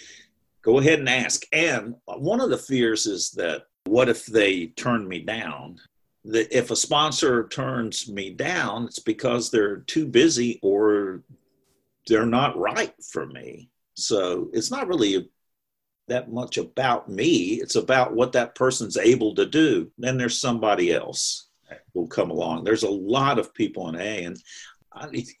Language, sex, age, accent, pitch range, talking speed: English, male, 50-69, American, 110-160 Hz, 160 wpm